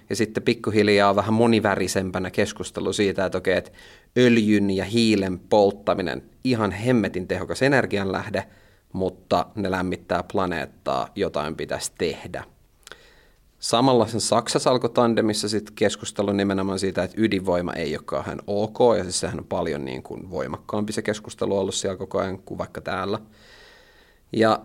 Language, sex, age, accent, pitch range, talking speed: Finnish, male, 30-49, native, 95-115 Hz, 135 wpm